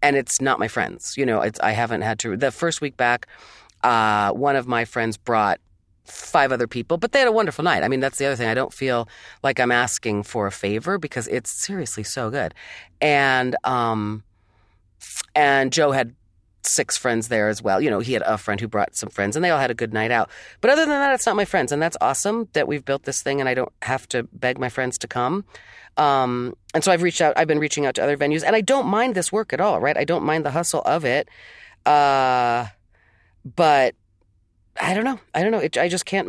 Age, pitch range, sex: 40-59, 115-160 Hz, female